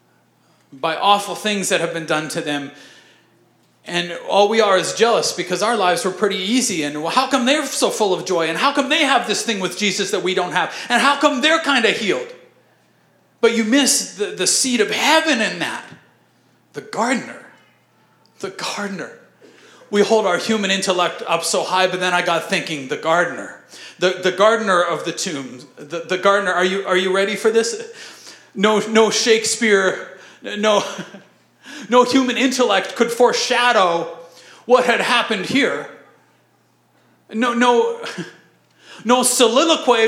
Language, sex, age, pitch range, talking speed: English, male, 40-59, 195-275 Hz, 170 wpm